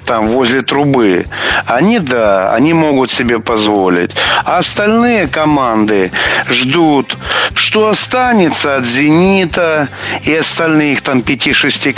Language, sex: Russian, male